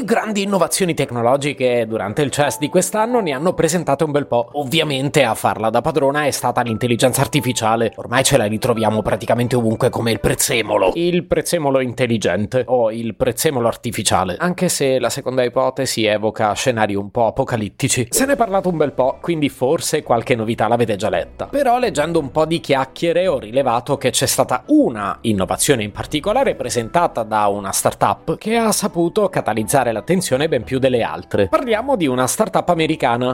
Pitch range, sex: 115-170 Hz, male